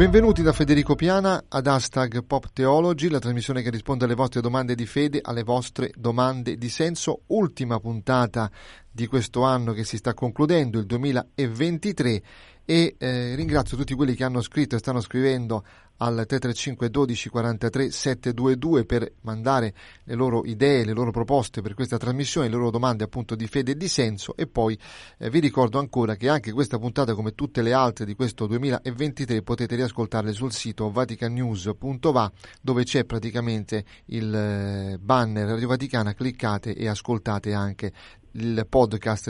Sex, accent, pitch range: male, native, 110-135 Hz